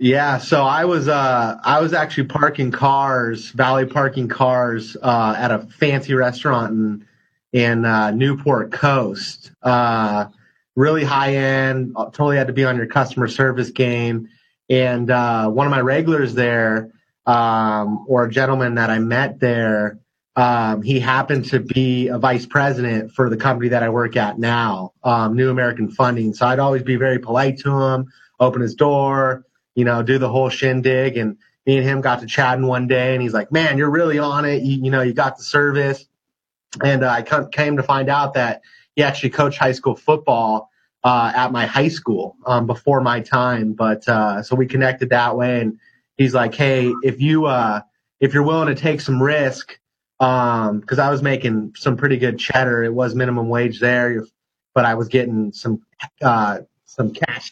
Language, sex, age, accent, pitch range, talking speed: English, male, 30-49, American, 120-135 Hz, 185 wpm